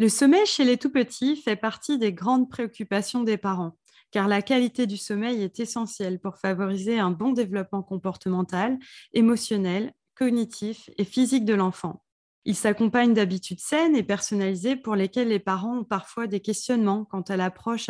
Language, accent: French, French